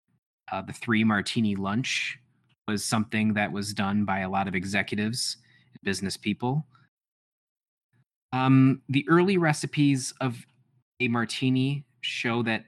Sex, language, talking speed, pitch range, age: male, English, 130 wpm, 100-130 Hz, 20-39